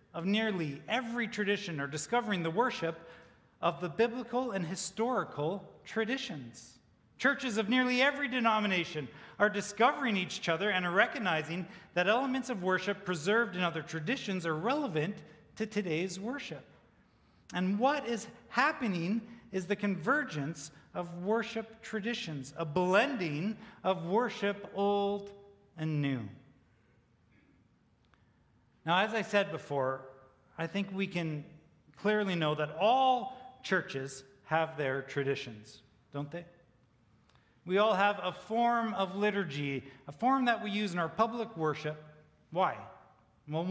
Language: English